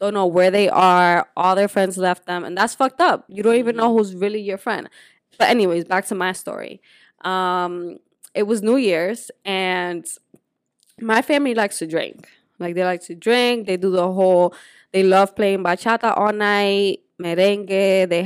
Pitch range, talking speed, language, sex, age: 180-230 Hz, 185 wpm, English, female, 20-39